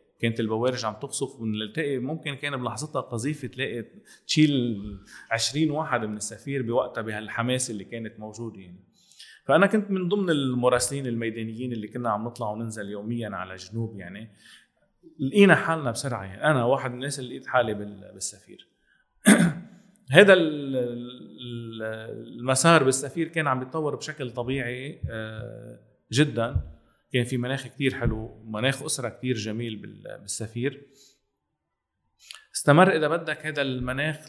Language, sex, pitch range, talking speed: Arabic, male, 110-145 Hz, 130 wpm